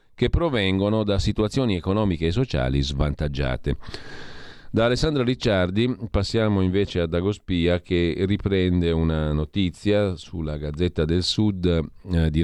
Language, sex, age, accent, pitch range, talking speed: Italian, male, 40-59, native, 80-105 Hz, 115 wpm